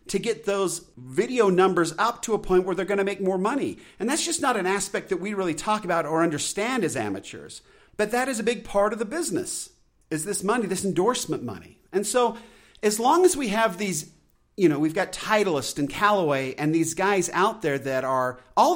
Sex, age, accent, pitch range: male, 40-59, American, 180-245 Hz